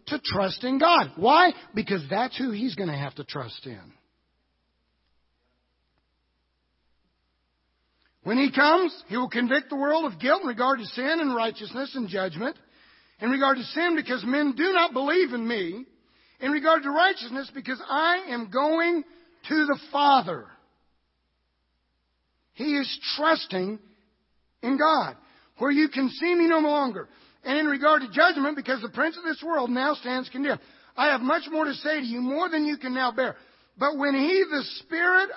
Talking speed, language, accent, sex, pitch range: 170 wpm, English, American, male, 190-305 Hz